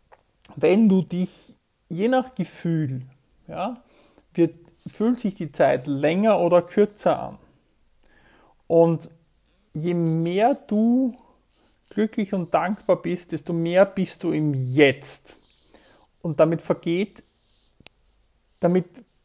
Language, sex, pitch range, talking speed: German, male, 150-190 Hz, 100 wpm